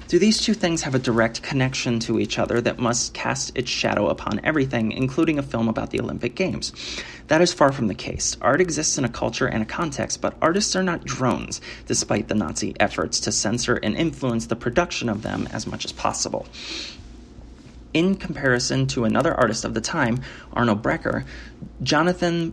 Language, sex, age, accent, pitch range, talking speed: English, male, 30-49, American, 115-145 Hz, 190 wpm